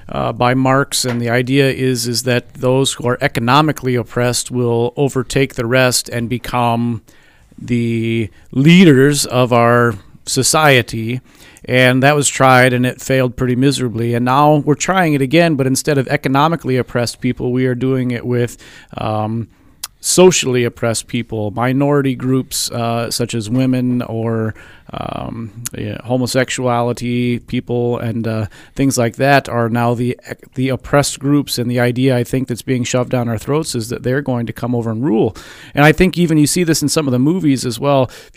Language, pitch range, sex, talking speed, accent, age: English, 120-140 Hz, male, 175 wpm, American, 40-59